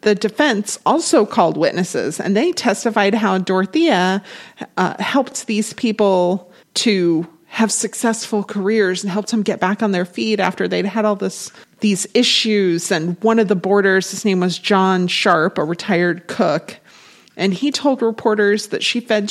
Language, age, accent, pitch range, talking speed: English, 30-49, American, 185-230 Hz, 165 wpm